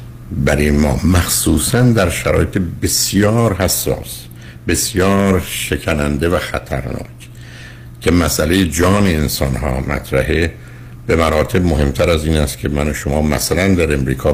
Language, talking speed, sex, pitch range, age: Persian, 125 wpm, male, 65-80 Hz, 60-79